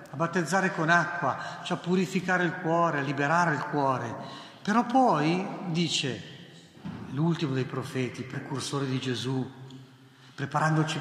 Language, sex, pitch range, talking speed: Italian, male, 135-190 Hz, 110 wpm